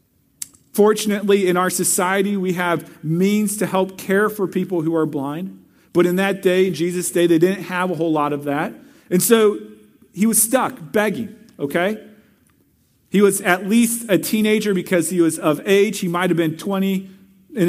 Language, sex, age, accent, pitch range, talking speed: English, male, 40-59, American, 185-265 Hz, 180 wpm